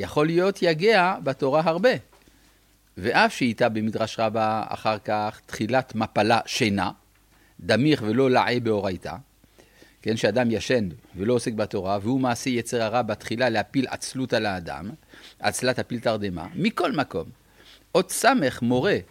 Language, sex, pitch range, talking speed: Hebrew, male, 110-160 Hz, 130 wpm